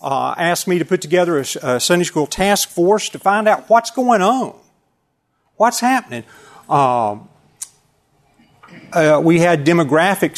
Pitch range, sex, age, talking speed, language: 130-165 Hz, male, 50-69, 145 wpm, English